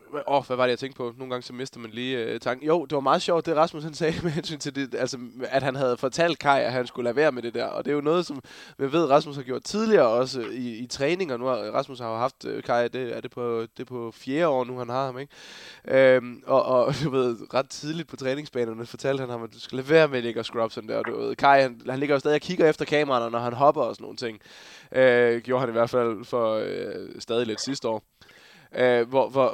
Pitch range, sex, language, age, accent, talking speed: 120-145 Hz, male, Danish, 20-39, native, 285 wpm